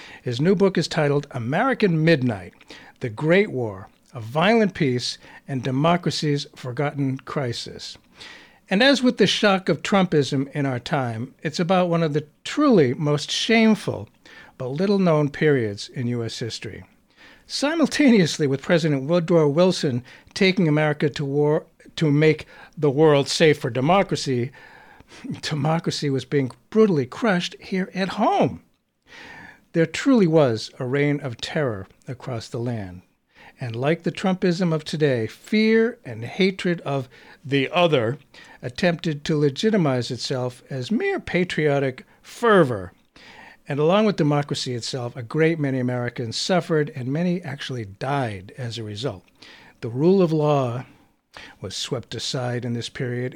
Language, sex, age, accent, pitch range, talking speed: English, male, 60-79, American, 130-175 Hz, 135 wpm